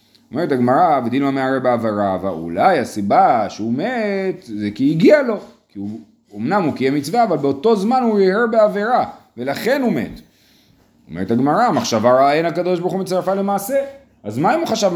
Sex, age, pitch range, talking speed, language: male, 30-49, 120-185 Hz, 175 wpm, Hebrew